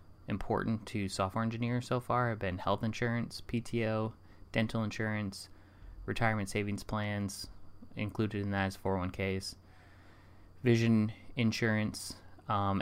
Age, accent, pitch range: 20-39, American, 95-105 Hz